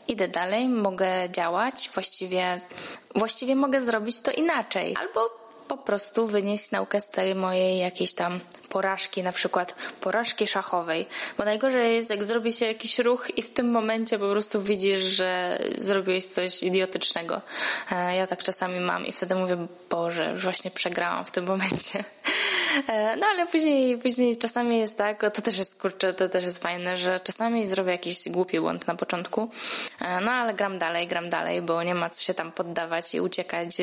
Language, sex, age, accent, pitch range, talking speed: Polish, female, 20-39, native, 180-225 Hz, 170 wpm